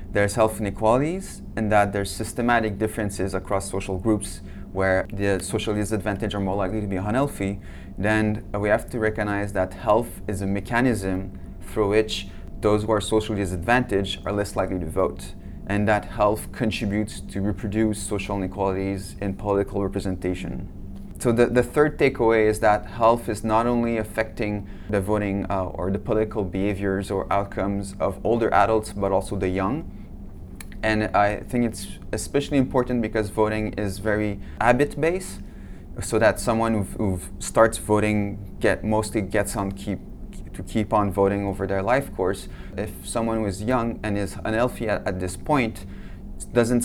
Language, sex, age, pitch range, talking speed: English, male, 20-39, 95-110 Hz, 160 wpm